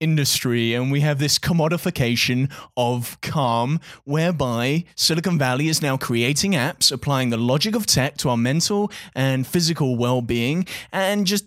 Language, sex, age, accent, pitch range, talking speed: English, male, 20-39, British, 120-170 Hz, 150 wpm